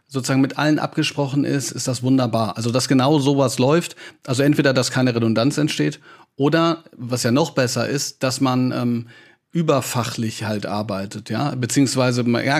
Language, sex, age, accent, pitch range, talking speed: German, male, 40-59, German, 125-160 Hz, 160 wpm